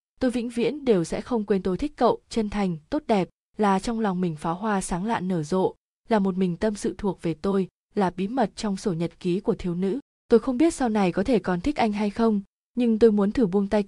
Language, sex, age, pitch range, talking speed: Vietnamese, female, 20-39, 190-230 Hz, 260 wpm